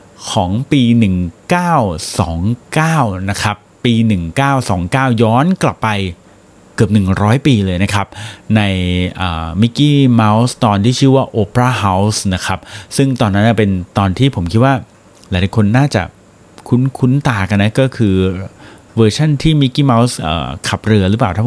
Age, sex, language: 30-49, male, Thai